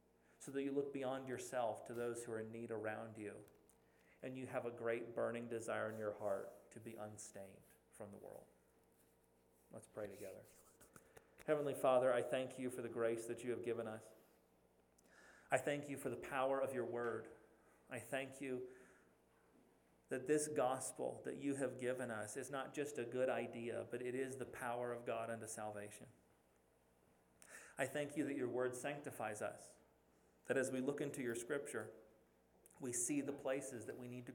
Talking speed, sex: 180 wpm, male